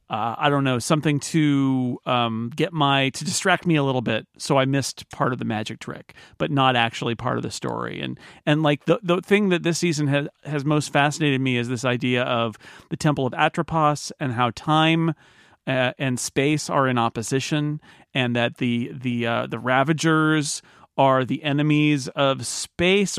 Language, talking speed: English, 190 wpm